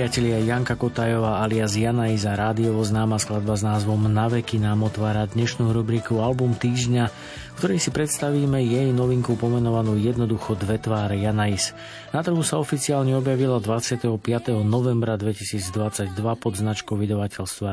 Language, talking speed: Slovak, 140 wpm